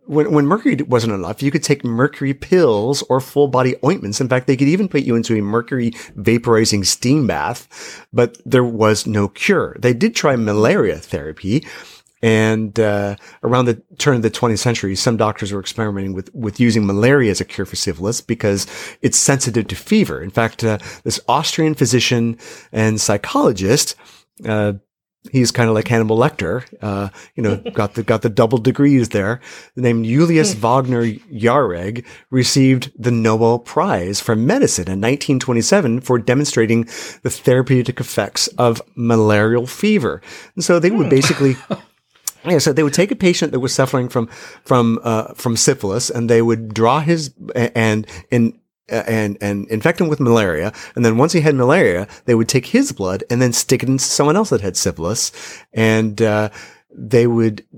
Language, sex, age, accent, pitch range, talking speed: English, male, 30-49, American, 110-140 Hz, 175 wpm